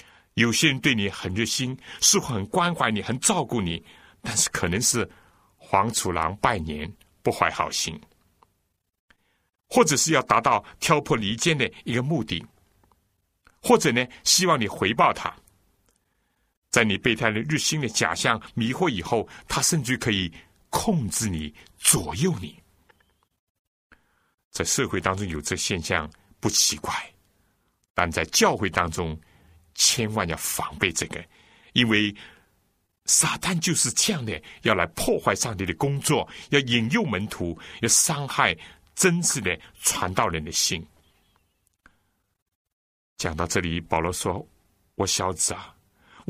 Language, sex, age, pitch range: Chinese, male, 60-79, 85-130 Hz